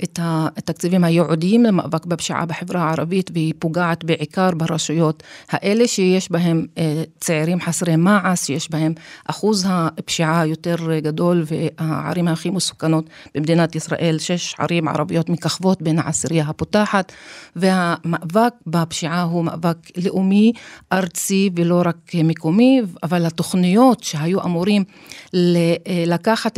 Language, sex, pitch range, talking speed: Hebrew, female, 160-180 Hz, 110 wpm